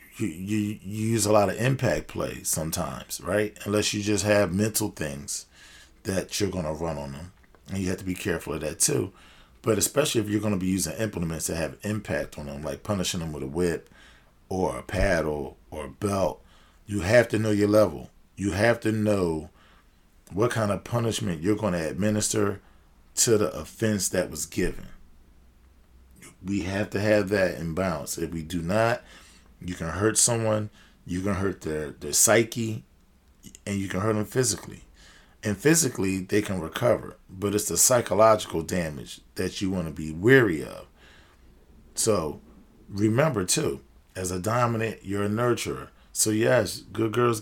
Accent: American